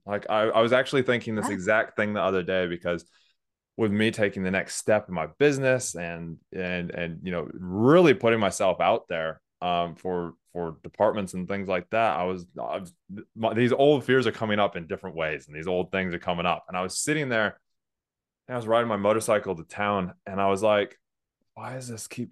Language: English